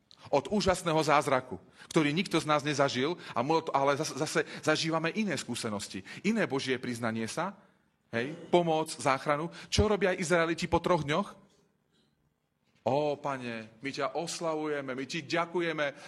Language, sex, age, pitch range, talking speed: Slovak, male, 30-49, 125-170 Hz, 125 wpm